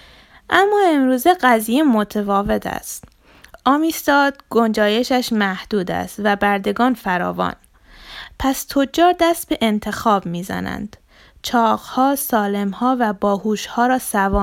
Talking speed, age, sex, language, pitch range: 100 wpm, 10-29, female, Persian, 200-245 Hz